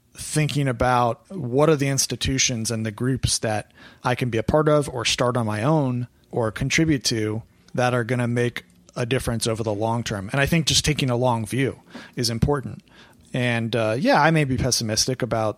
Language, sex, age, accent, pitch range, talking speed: English, male, 30-49, American, 115-140 Hz, 205 wpm